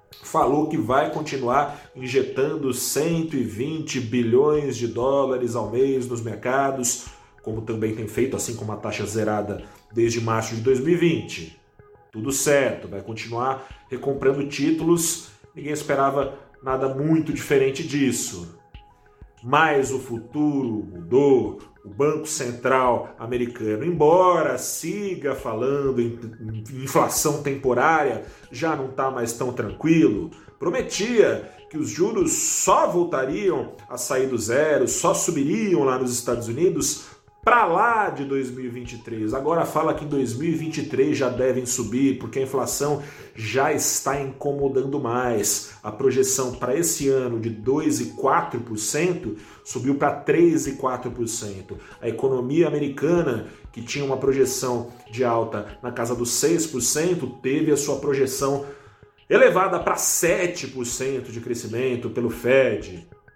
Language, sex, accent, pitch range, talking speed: Portuguese, male, Brazilian, 115-145 Hz, 120 wpm